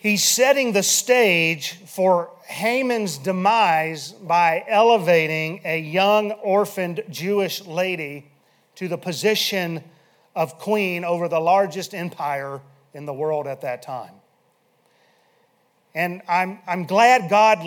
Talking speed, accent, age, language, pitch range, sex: 115 wpm, American, 40-59, English, 170-225 Hz, male